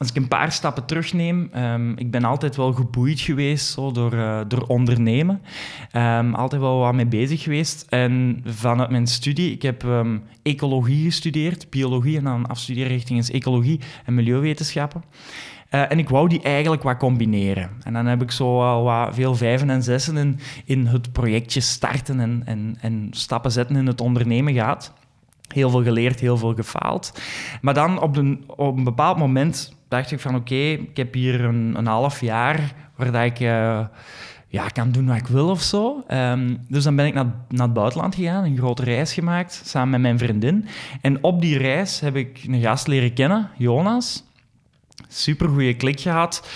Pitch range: 120-150 Hz